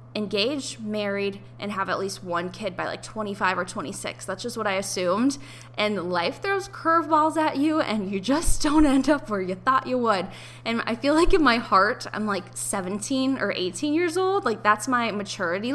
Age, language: 10-29, English